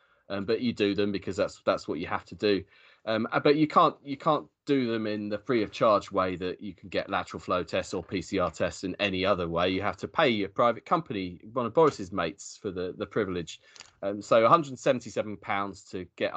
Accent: British